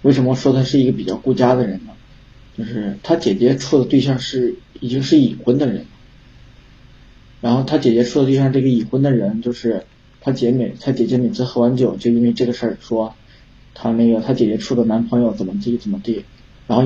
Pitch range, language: 120-140 Hz, Chinese